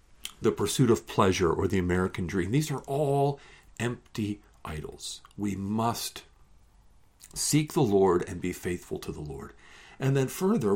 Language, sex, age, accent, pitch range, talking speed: English, male, 50-69, American, 85-135 Hz, 150 wpm